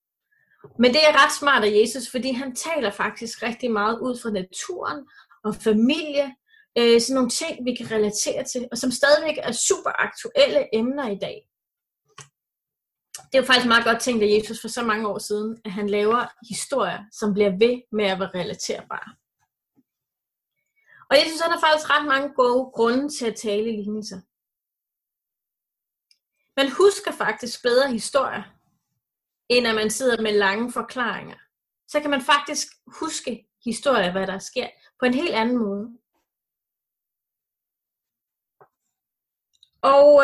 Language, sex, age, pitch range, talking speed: Danish, female, 30-49, 220-280 Hz, 150 wpm